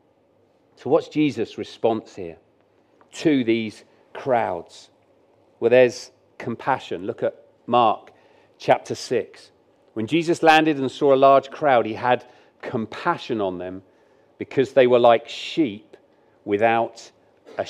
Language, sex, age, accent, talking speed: English, male, 40-59, British, 120 wpm